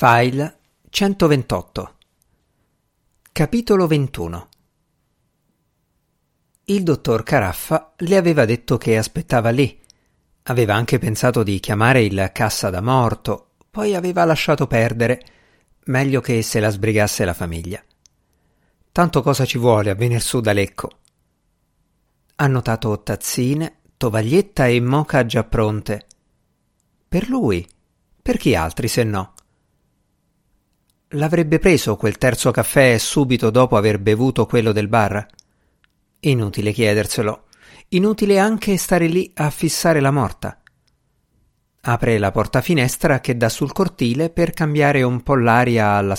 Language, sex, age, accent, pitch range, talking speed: Italian, male, 50-69, native, 110-155 Hz, 120 wpm